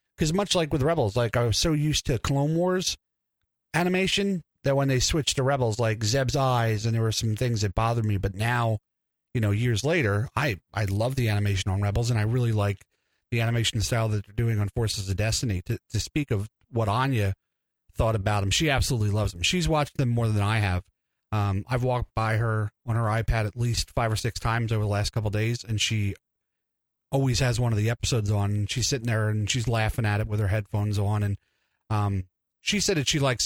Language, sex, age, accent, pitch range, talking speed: English, male, 30-49, American, 105-135 Hz, 225 wpm